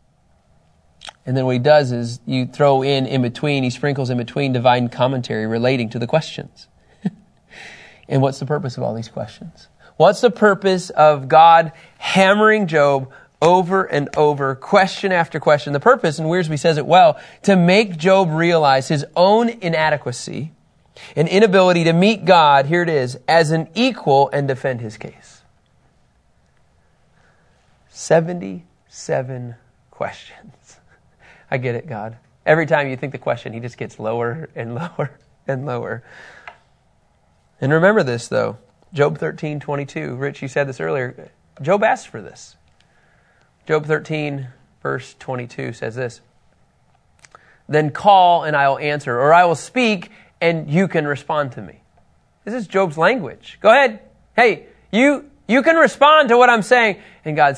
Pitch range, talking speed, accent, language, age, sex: 125-175 Hz, 150 wpm, American, English, 30-49, male